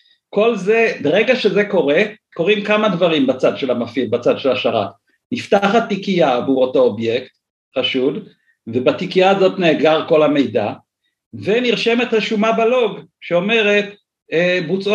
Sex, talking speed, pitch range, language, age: male, 120 wpm, 175-225 Hz, Hebrew, 50-69